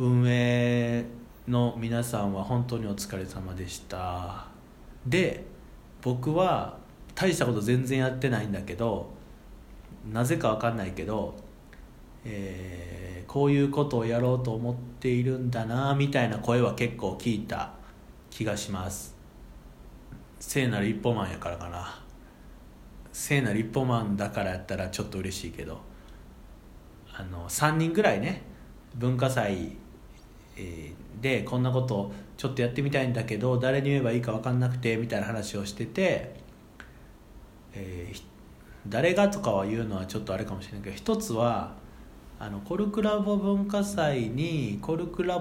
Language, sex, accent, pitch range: Japanese, male, native, 95-125 Hz